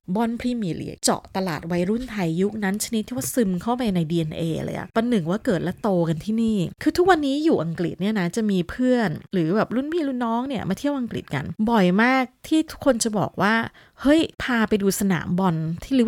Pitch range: 175-240 Hz